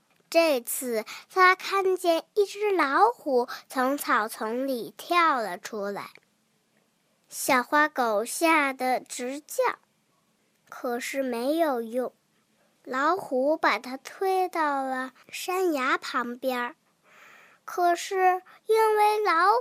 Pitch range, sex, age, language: 255-405 Hz, male, 10-29, Chinese